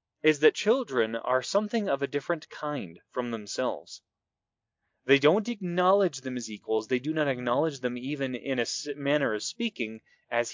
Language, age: English, 20-39